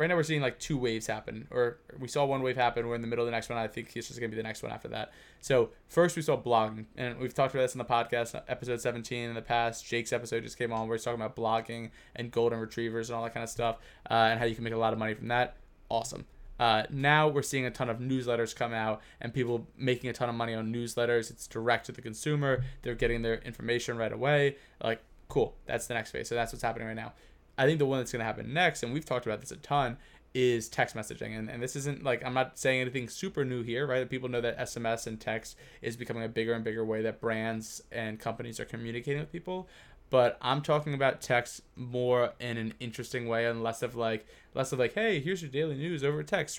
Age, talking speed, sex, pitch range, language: 20-39, 260 wpm, male, 115-135 Hz, English